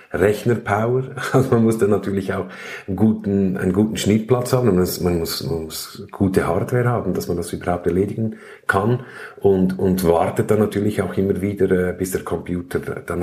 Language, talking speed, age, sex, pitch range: German, 170 wpm, 50-69, male, 95-115 Hz